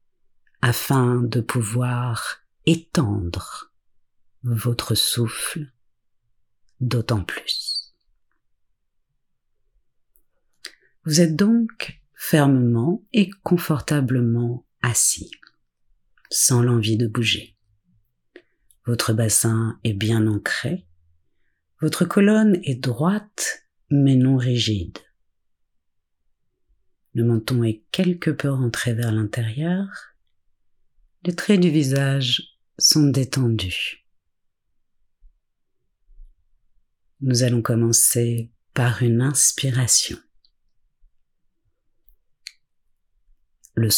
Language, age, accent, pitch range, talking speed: French, 50-69, French, 95-135 Hz, 70 wpm